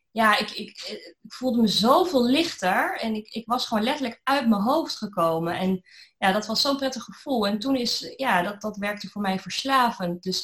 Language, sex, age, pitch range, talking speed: Dutch, female, 20-39, 190-245 Hz, 200 wpm